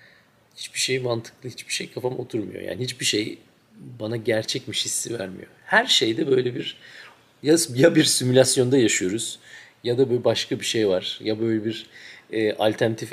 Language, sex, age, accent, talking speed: Turkish, male, 40-59, native, 155 wpm